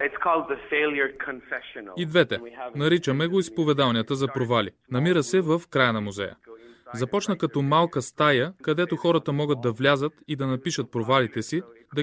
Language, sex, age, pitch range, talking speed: Bulgarian, male, 20-39, 120-160 Hz, 140 wpm